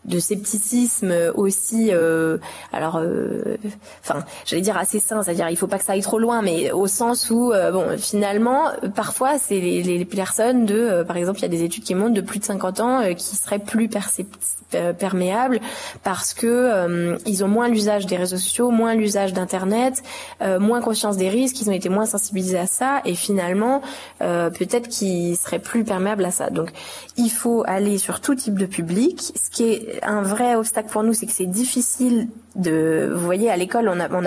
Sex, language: female, French